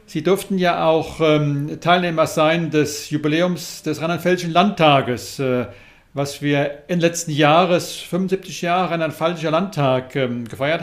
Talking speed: 140 wpm